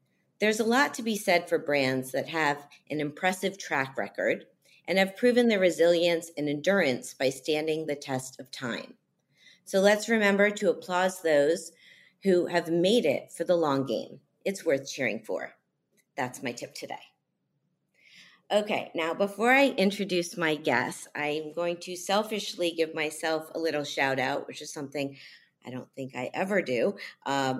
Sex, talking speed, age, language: female, 165 wpm, 40-59, English